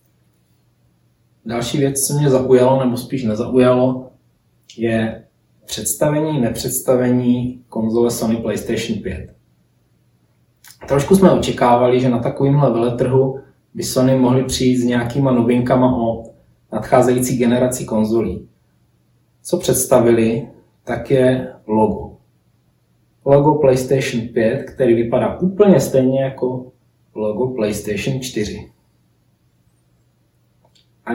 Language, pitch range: Czech, 115-130 Hz